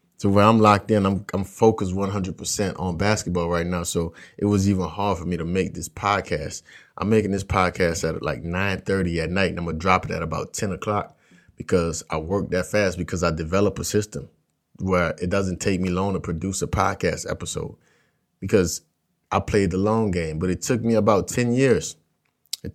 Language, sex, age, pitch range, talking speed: English, male, 30-49, 90-115 Hz, 205 wpm